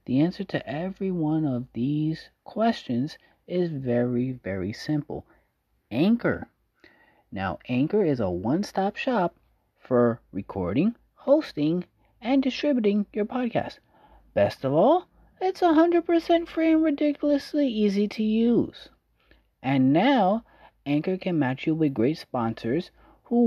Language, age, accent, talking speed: English, 30-49, American, 120 wpm